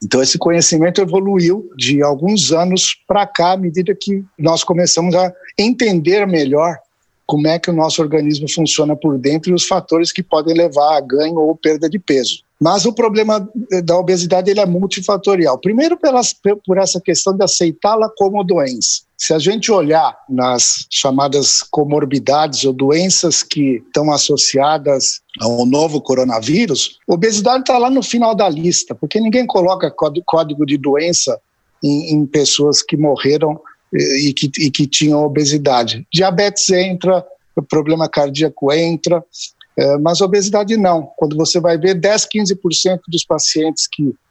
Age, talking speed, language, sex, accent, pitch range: 60-79, 155 wpm, Portuguese, male, Brazilian, 140-185 Hz